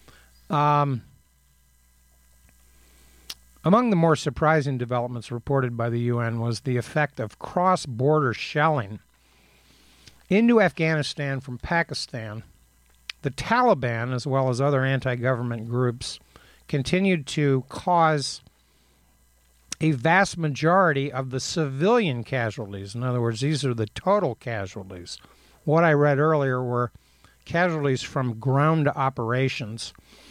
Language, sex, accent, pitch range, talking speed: English, male, American, 110-150 Hz, 110 wpm